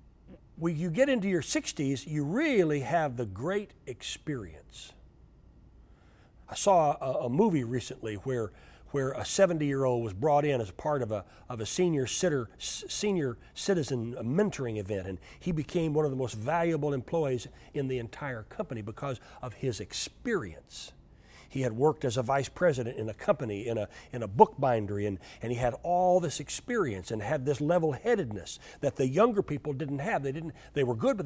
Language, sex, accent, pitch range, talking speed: English, male, American, 110-155 Hz, 180 wpm